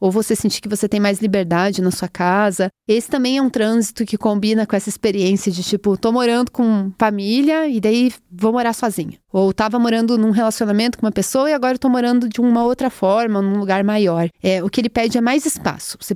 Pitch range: 195-240 Hz